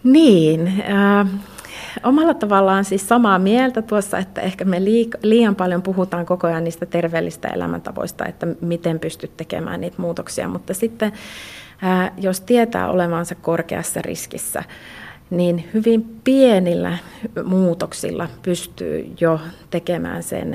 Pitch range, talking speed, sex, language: 170-200 Hz, 115 wpm, female, Finnish